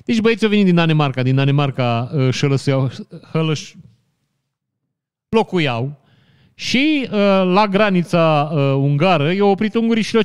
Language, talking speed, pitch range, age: Romanian, 135 wpm, 130-175 Hz, 30-49